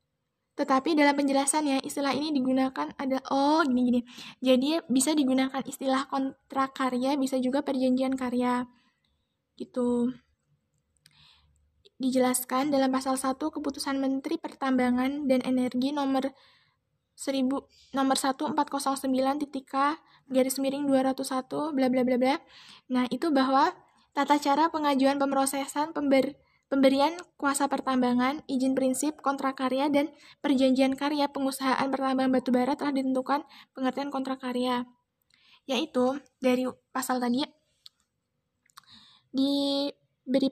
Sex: female